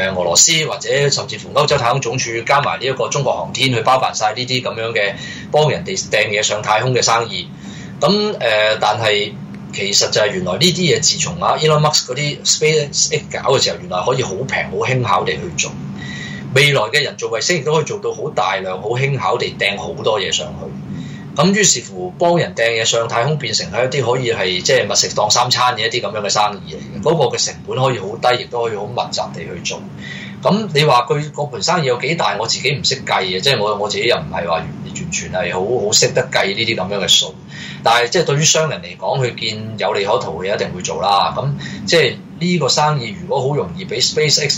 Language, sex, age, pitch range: Chinese, male, 20-39, 110-165 Hz